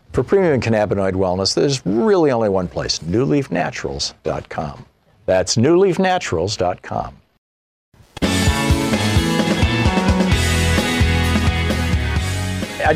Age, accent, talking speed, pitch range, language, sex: 50-69, American, 60 wpm, 90-135 Hz, English, male